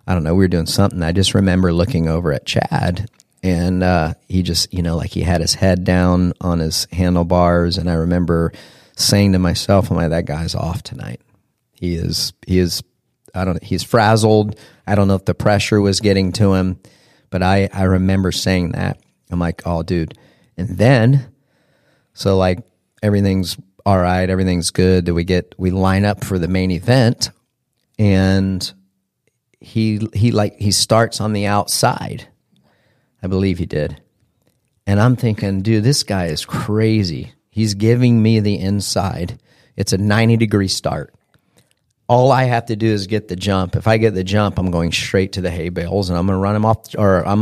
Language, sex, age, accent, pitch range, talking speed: English, male, 40-59, American, 90-110 Hz, 190 wpm